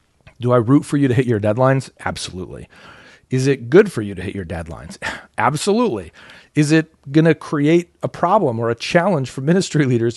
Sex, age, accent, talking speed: male, 40-59, American, 195 wpm